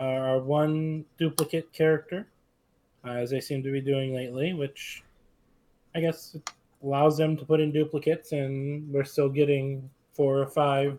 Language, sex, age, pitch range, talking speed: English, male, 20-39, 130-155 Hz, 155 wpm